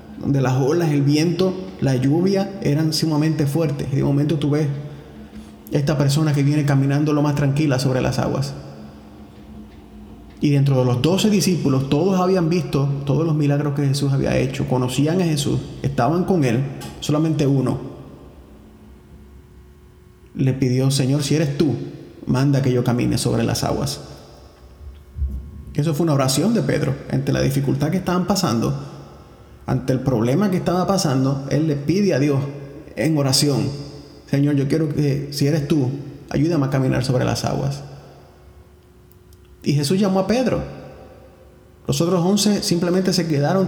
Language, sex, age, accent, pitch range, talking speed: English, male, 30-49, Venezuelan, 130-160 Hz, 155 wpm